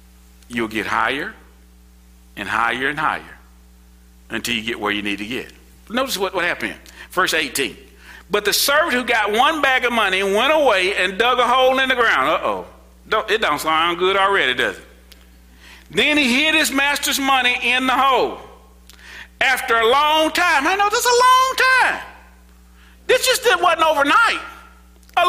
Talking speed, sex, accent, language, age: 180 wpm, male, American, English, 50-69